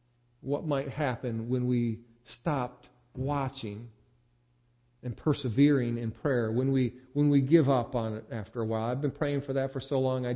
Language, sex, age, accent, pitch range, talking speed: English, male, 50-69, American, 120-160 Hz, 180 wpm